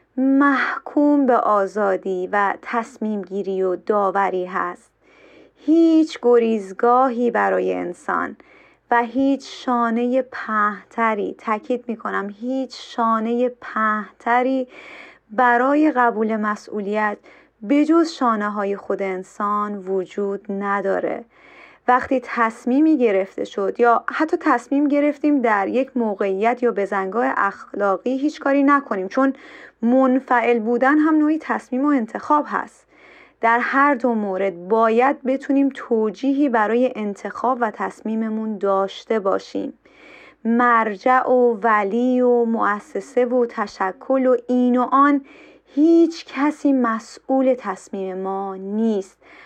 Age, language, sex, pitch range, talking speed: 30-49, Persian, female, 210-265 Hz, 110 wpm